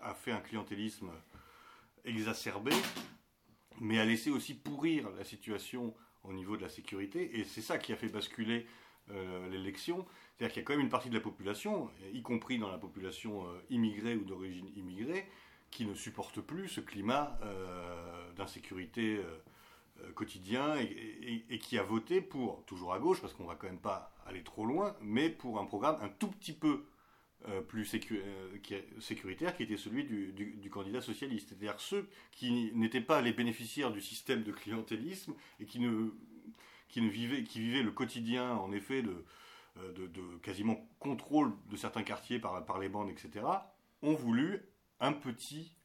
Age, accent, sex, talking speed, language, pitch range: 40-59, French, male, 185 wpm, French, 100-120 Hz